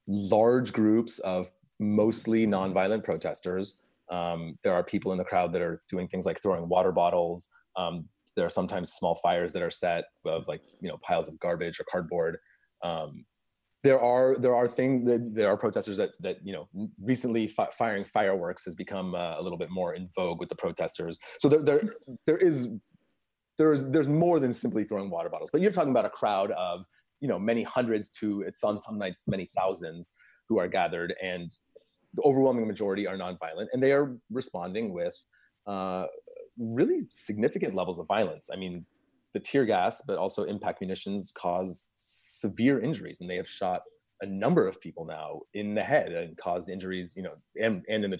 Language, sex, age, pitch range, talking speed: English, male, 30-49, 95-130 Hz, 190 wpm